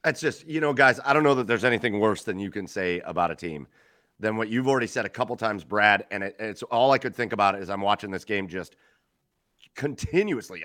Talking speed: 250 wpm